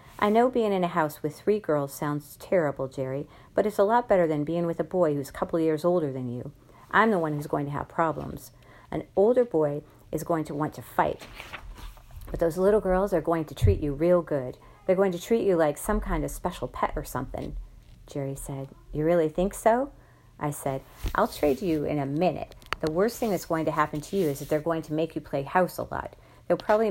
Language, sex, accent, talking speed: English, female, American, 240 wpm